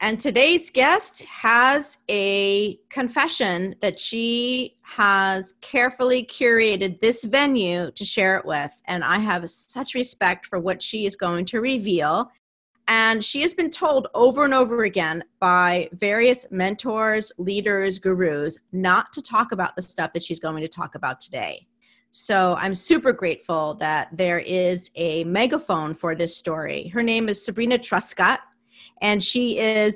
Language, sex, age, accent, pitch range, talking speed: English, female, 30-49, American, 185-245 Hz, 150 wpm